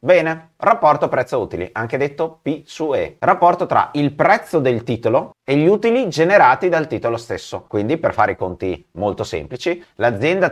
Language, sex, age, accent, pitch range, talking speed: Italian, male, 30-49, native, 125-165 Hz, 170 wpm